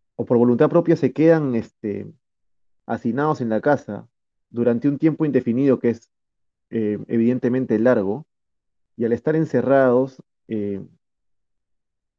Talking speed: 120 wpm